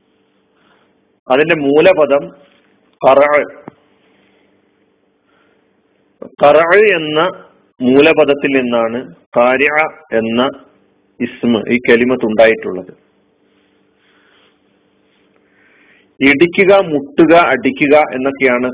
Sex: male